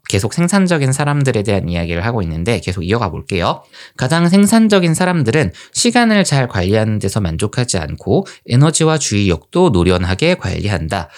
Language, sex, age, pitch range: Korean, male, 20-39, 100-160 Hz